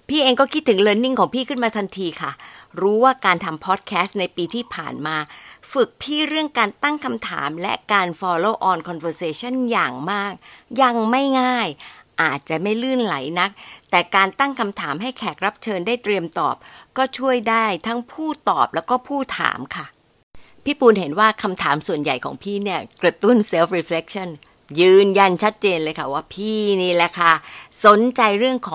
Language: Thai